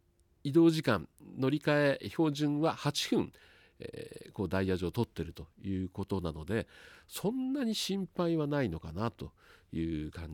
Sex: male